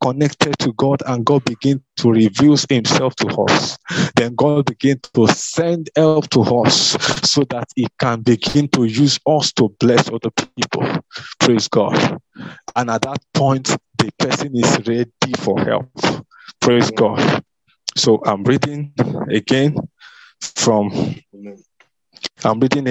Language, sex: English, male